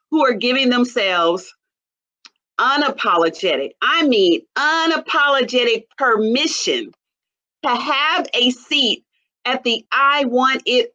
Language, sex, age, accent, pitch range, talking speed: English, female, 40-59, American, 230-335 Hz, 100 wpm